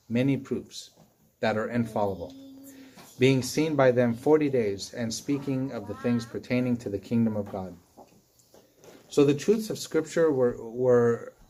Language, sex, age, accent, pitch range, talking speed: English, male, 30-49, American, 120-150 Hz, 150 wpm